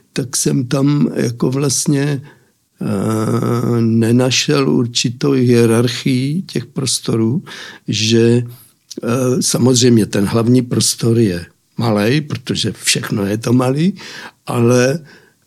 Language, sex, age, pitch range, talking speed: Czech, male, 60-79, 115-140 Hz, 95 wpm